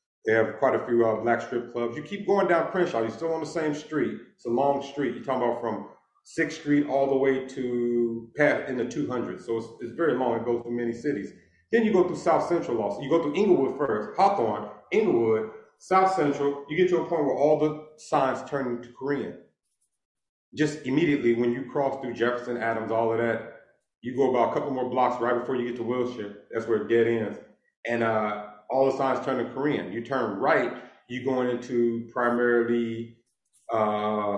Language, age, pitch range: English, 40-59, 115-140 Hz